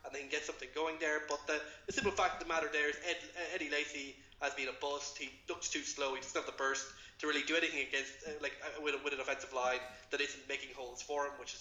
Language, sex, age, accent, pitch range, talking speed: English, male, 20-39, Irish, 135-165 Hz, 275 wpm